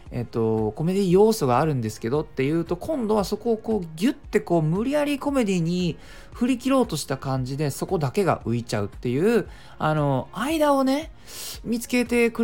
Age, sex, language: 20-39, male, Japanese